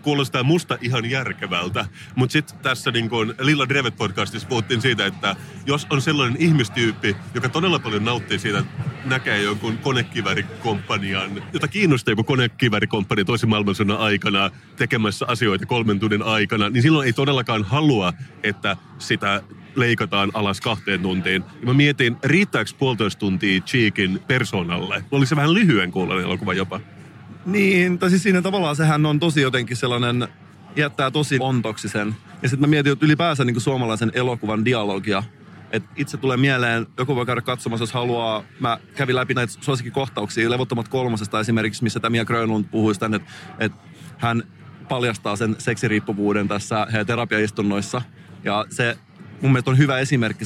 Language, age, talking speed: Finnish, 30-49, 150 wpm